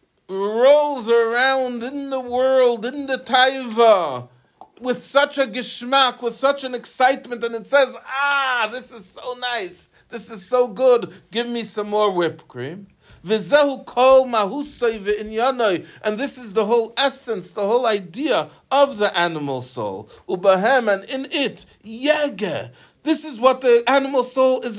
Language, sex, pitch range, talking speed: English, male, 185-280 Hz, 145 wpm